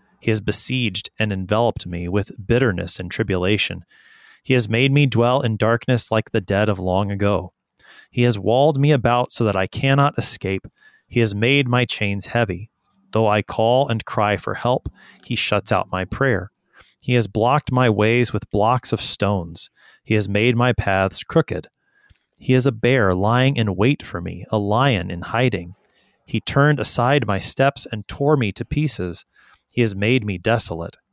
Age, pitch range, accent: 30-49, 100-130 Hz, American